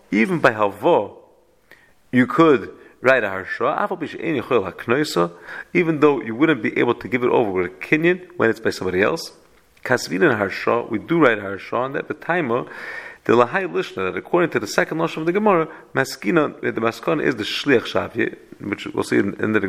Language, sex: English, male